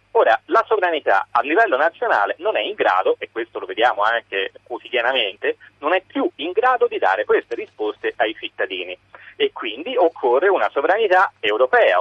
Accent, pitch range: native, 330-455 Hz